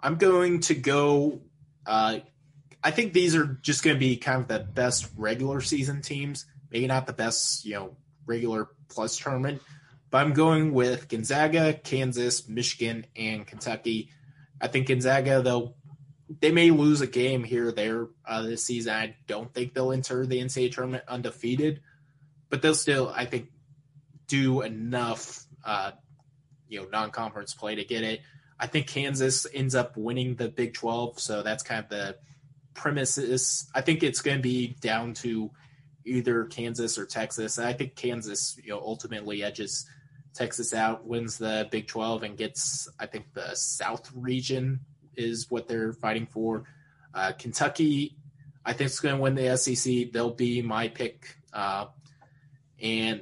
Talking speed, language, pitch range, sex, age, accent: 165 wpm, English, 115-140 Hz, male, 20-39, American